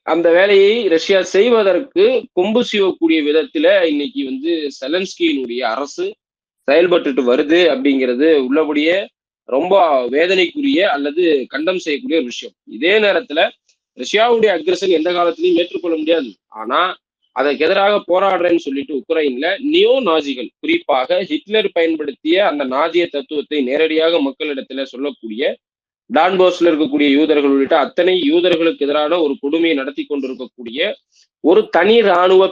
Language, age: Tamil, 20-39